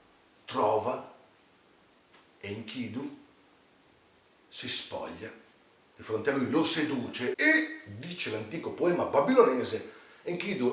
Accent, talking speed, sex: native, 90 wpm, male